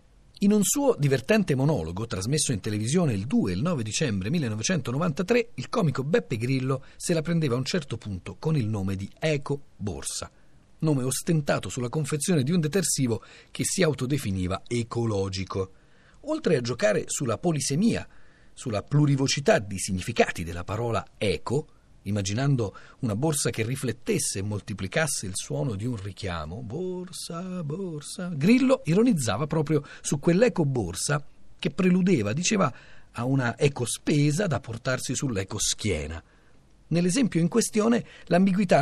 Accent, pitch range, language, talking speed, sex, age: native, 110-170 Hz, Italian, 135 wpm, male, 40-59